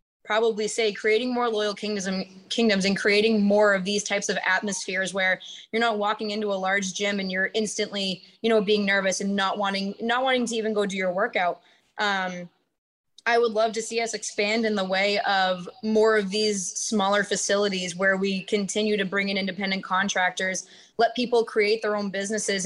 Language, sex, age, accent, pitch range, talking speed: English, female, 20-39, American, 195-225 Hz, 195 wpm